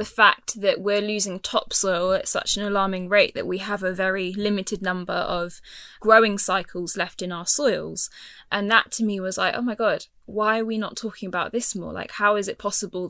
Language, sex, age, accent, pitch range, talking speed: English, female, 10-29, British, 190-230 Hz, 215 wpm